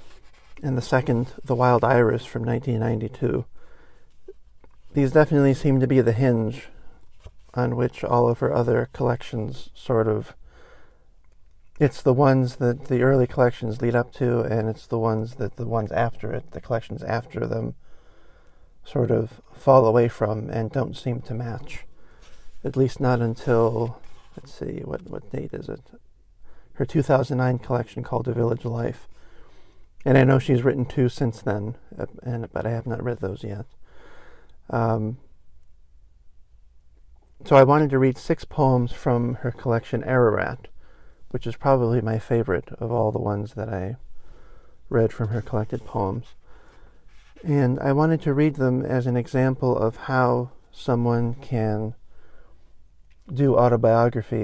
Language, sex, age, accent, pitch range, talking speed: English, male, 50-69, American, 110-130 Hz, 150 wpm